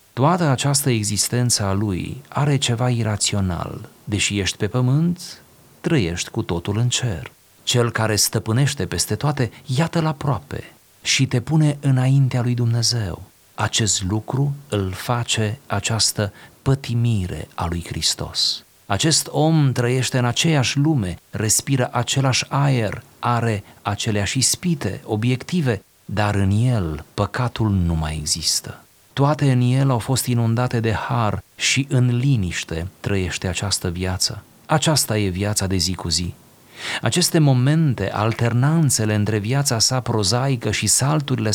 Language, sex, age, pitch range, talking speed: Romanian, male, 40-59, 105-130 Hz, 130 wpm